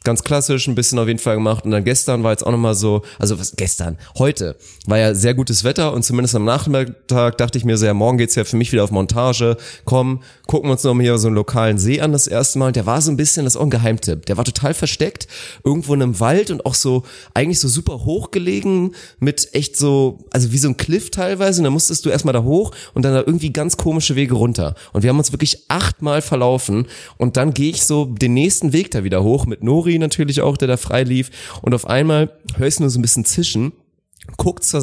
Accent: German